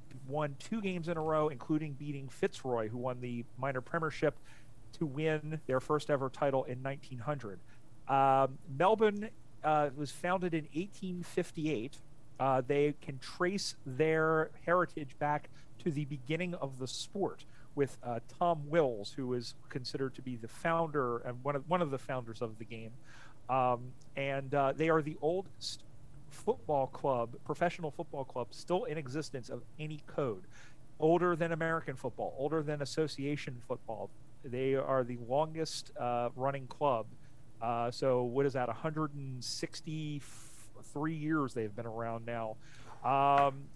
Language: English